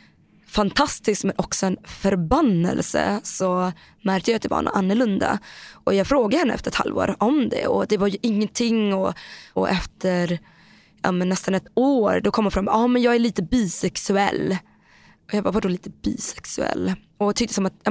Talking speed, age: 190 wpm, 20-39